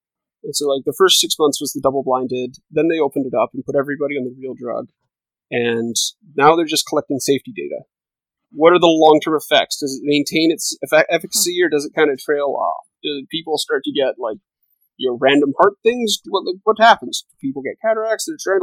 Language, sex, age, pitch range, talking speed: English, male, 30-49, 145-205 Hz, 215 wpm